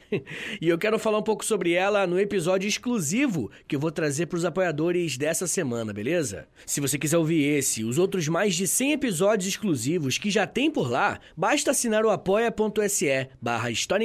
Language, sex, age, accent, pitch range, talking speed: Portuguese, male, 20-39, Brazilian, 160-255 Hz, 190 wpm